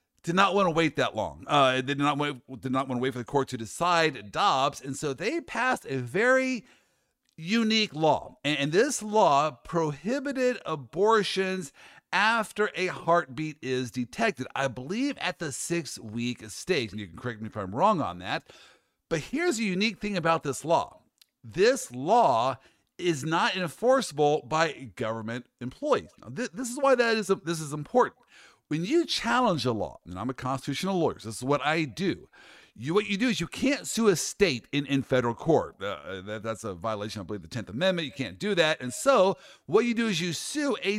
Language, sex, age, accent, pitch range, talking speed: English, male, 50-69, American, 130-200 Hz, 195 wpm